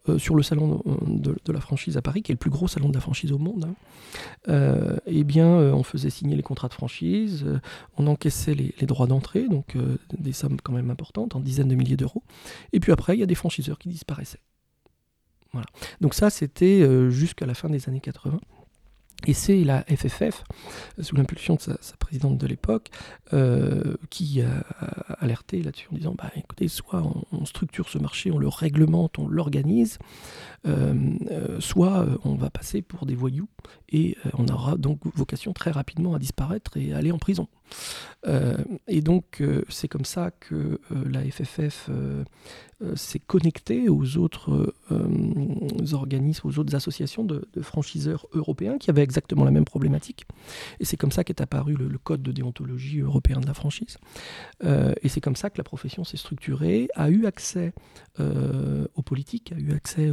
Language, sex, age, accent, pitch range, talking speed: French, male, 40-59, French, 135-170 Hz, 195 wpm